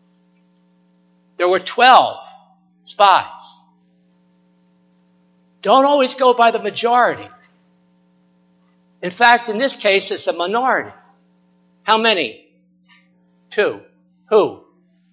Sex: male